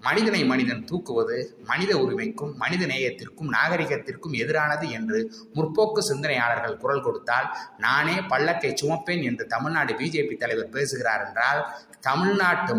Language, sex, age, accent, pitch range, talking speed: Tamil, male, 20-39, native, 125-210 Hz, 115 wpm